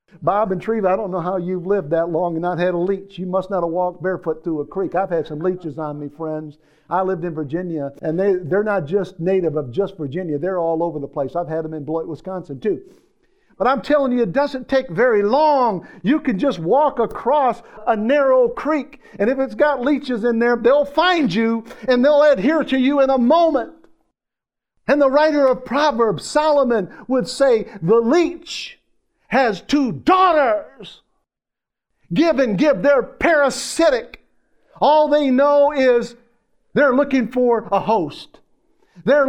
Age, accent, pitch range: 50-69, American, 165-265 Hz